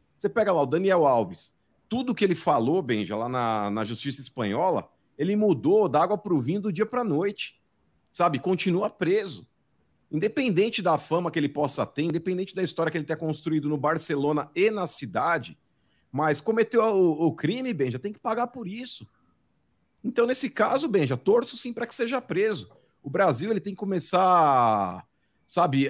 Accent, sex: Brazilian, male